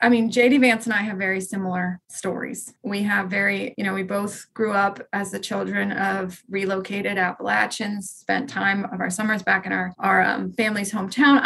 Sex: female